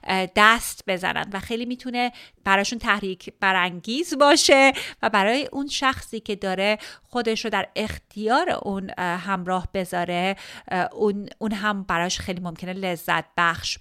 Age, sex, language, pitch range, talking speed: 30-49, female, Persian, 190-245 Hz, 125 wpm